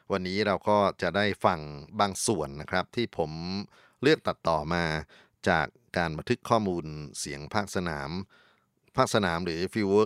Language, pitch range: Thai, 85-105 Hz